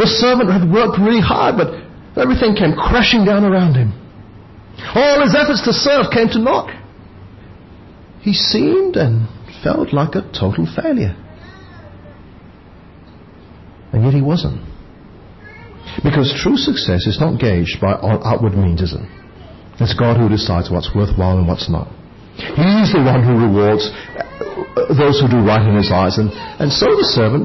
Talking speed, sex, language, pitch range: 155 wpm, male, English, 95-135 Hz